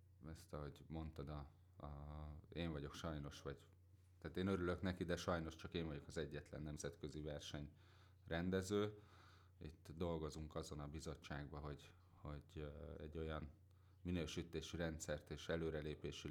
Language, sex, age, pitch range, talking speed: Hungarian, male, 30-49, 80-90 Hz, 135 wpm